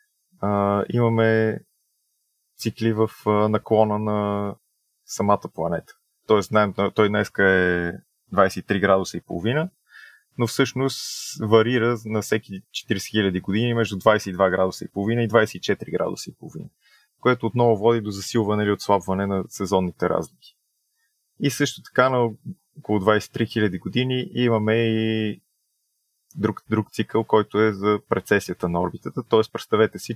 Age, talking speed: 20-39, 130 wpm